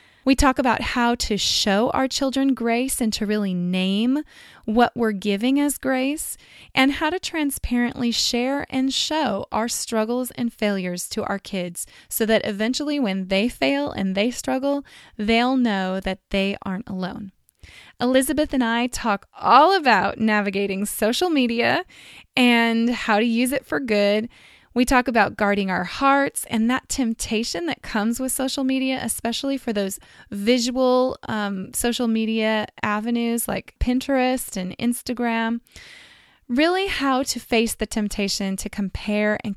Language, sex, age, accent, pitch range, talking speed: English, female, 20-39, American, 205-260 Hz, 150 wpm